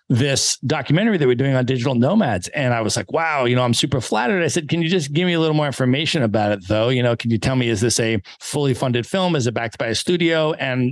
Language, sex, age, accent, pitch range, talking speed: English, male, 30-49, American, 110-130 Hz, 280 wpm